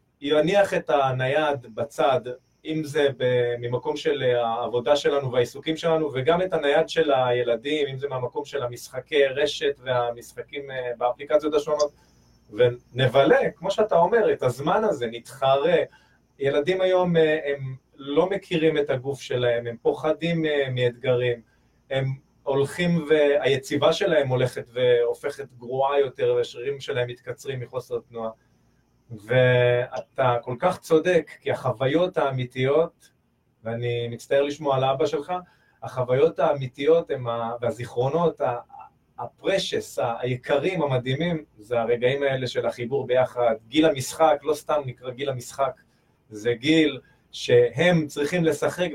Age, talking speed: 30-49, 115 wpm